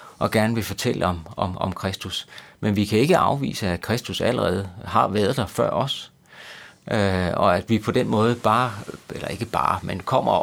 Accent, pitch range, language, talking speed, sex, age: native, 95-120 Hz, Danish, 195 wpm, male, 30-49